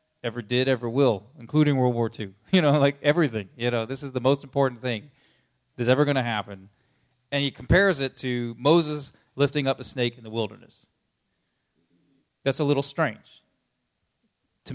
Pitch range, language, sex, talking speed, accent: 120-155 Hz, English, male, 175 wpm, American